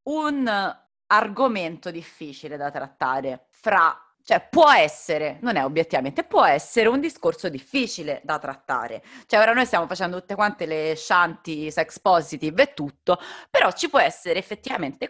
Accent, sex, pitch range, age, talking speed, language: native, female, 165-220 Hz, 30-49, 145 wpm, Italian